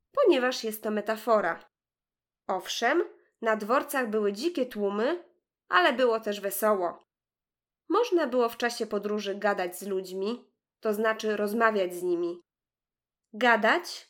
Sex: female